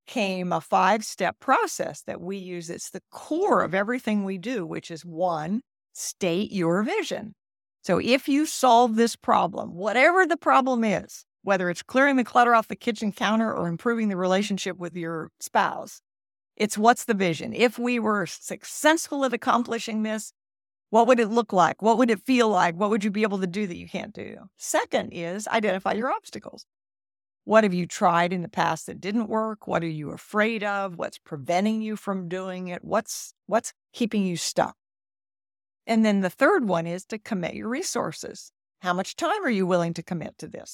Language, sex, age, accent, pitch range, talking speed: English, female, 50-69, American, 175-230 Hz, 190 wpm